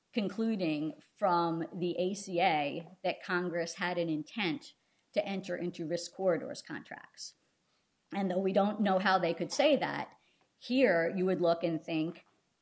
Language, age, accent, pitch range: English, 50-69, American, 170-215 Hz